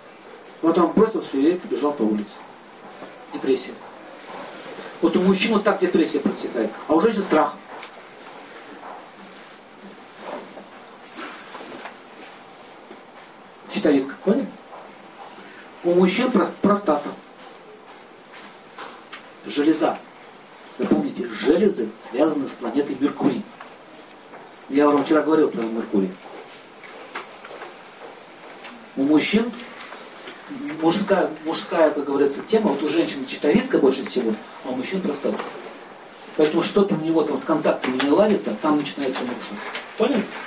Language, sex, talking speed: Russian, male, 105 wpm